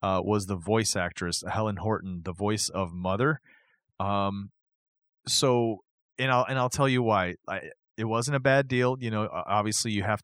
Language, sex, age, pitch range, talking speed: English, male, 30-49, 100-130 Hz, 175 wpm